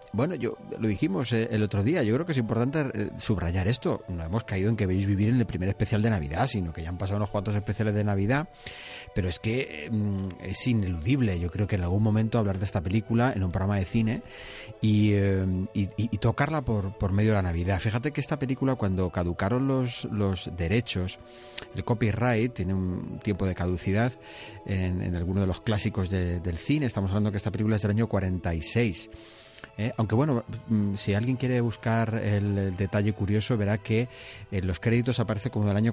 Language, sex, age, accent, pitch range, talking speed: Spanish, male, 30-49, Spanish, 95-115 Hz, 210 wpm